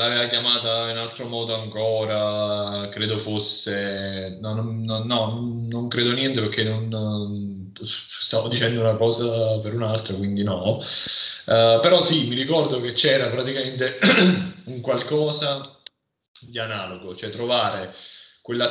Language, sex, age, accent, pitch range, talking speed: Italian, male, 20-39, native, 105-120 Hz, 120 wpm